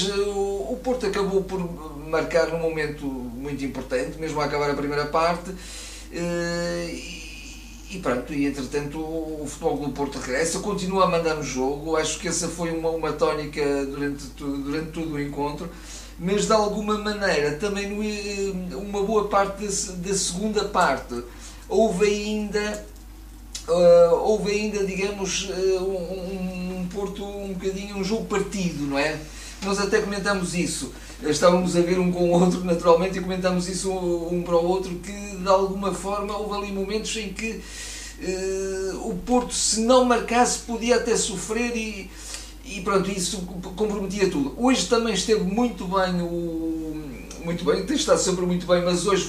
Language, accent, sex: Portuguese, Portuguese, male